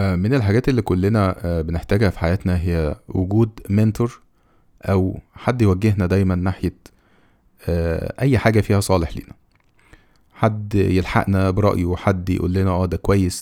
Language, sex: Arabic, male